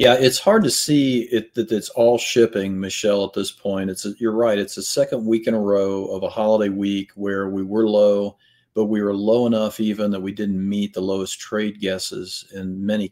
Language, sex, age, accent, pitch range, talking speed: English, male, 40-59, American, 95-110 Hz, 225 wpm